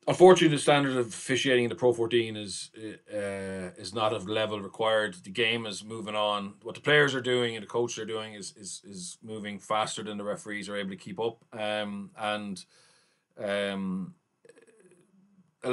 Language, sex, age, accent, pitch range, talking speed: English, male, 30-49, Irish, 110-140 Hz, 185 wpm